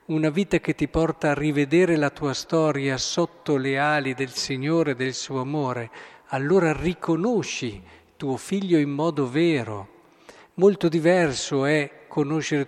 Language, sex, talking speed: Italian, male, 140 wpm